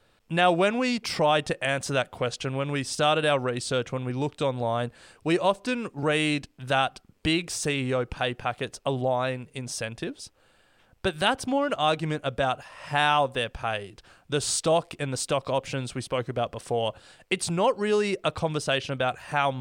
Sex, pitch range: male, 125-165 Hz